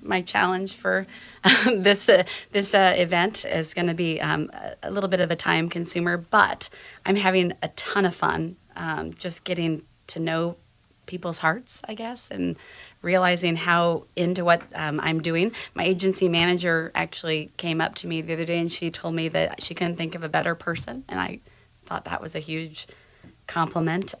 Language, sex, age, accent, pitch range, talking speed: English, female, 30-49, American, 160-185 Hz, 190 wpm